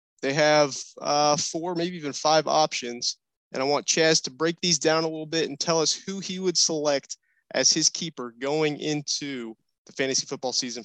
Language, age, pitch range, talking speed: English, 20-39, 140-170 Hz, 195 wpm